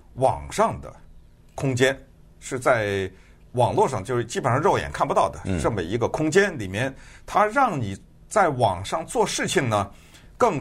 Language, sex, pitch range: Chinese, male, 115-195 Hz